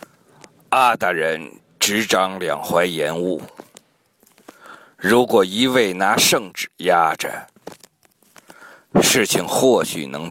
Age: 50-69